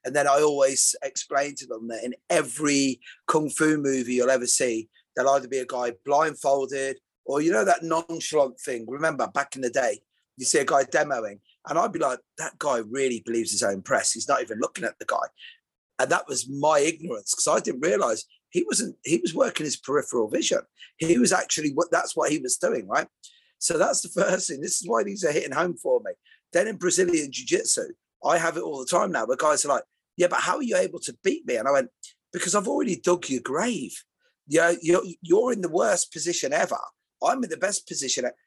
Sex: male